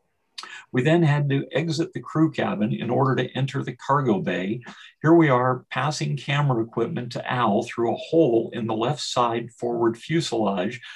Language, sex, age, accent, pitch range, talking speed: English, male, 50-69, American, 115-140 Hz, 175 wpm